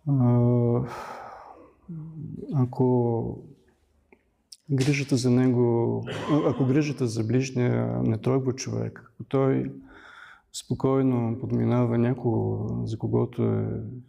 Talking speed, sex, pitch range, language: 75 wpm, male, 110-130 Hz, Bulgarian